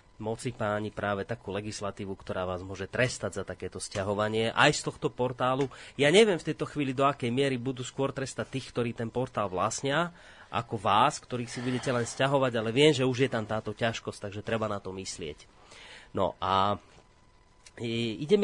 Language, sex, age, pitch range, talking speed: Slovak, male, 30-49, 110-140 Hz, 180 wpm